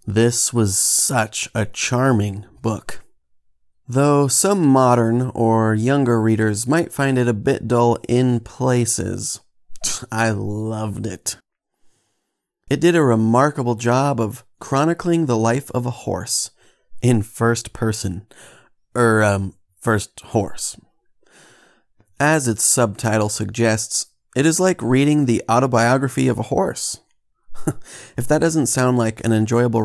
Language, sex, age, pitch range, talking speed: English, male, 30-49, 105-130 Hz, 125 wpm